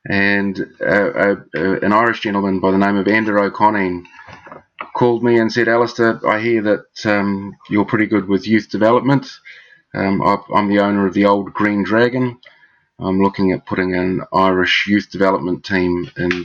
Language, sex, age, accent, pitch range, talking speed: English, male, 30-49, Australian, 95-110 Hz, 180 wpm